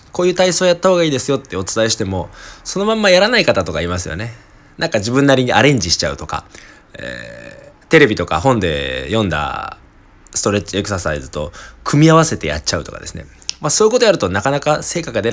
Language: Japanese